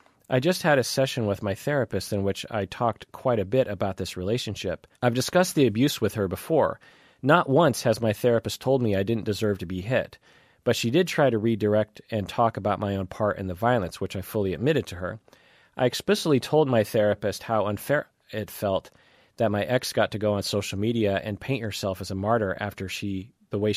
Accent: American